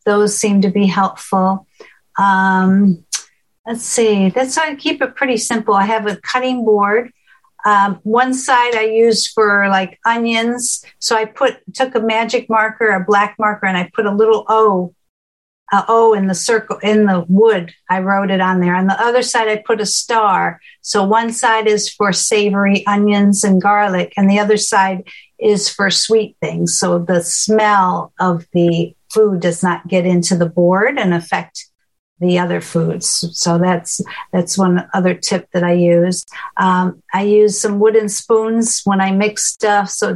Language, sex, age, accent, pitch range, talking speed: English, female, 60-79, American, 185-225 Hz, 180 wpm